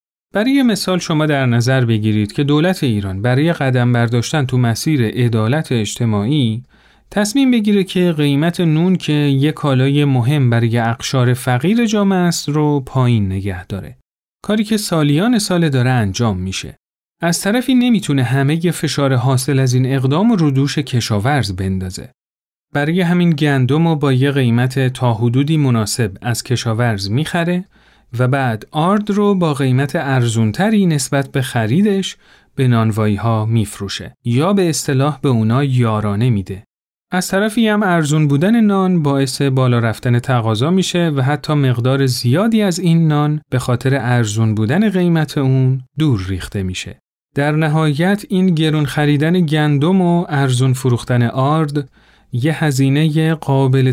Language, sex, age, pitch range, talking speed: Persian, male, 40-59, 120-170 Hz, 145 wpm